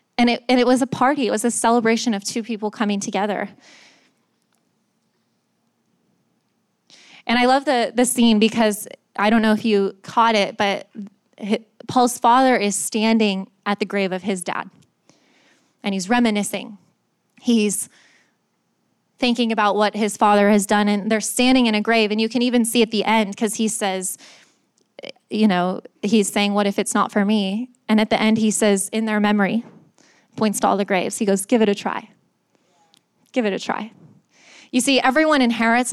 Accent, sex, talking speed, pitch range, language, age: American, female, 180 wpm, 205-245 Hz, English, 20-39